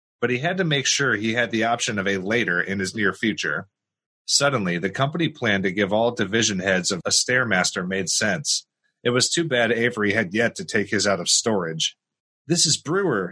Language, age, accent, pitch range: English, 30-49, American, 100-125 Hz